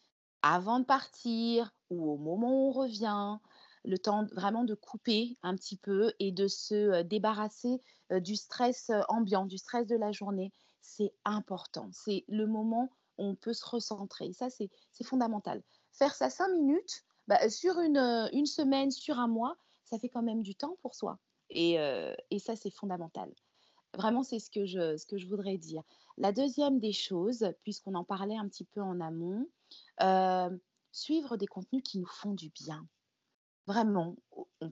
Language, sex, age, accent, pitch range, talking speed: French, female, 30-49, French, 185-235 Hz, 175 wpm